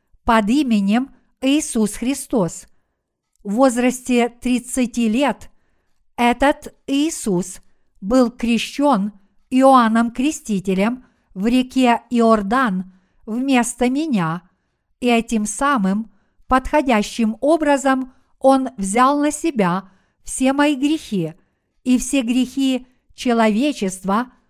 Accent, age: native, 50-69